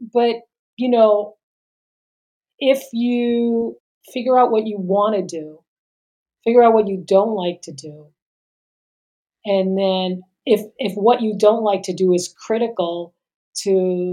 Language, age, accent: English, 40-59, American